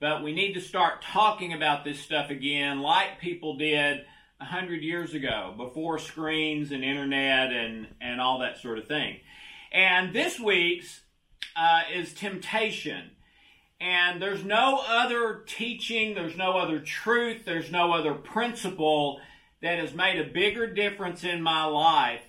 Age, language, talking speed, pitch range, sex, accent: 40-59, English, 150 wpm, 150-185 Hz, male, American